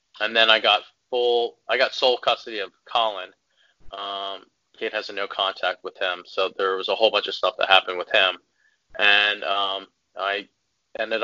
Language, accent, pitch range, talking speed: English, American, 100-120 Hz, 180 wpm